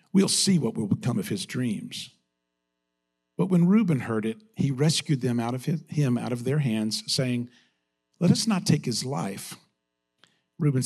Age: 50-69